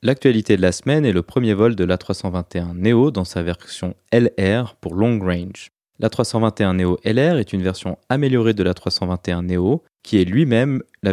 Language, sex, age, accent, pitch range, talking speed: French, male, 20-39, French, 90-120 Hz, 155 wpm